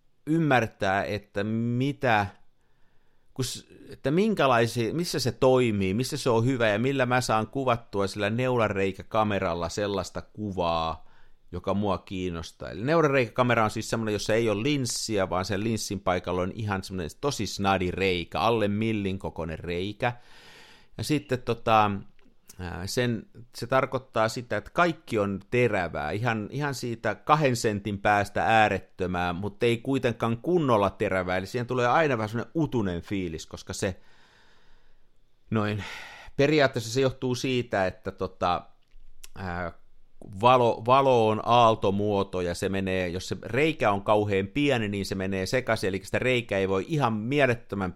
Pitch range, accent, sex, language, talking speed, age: 95-125 Hz, native, male, Finnish, 135 wpm, 50-69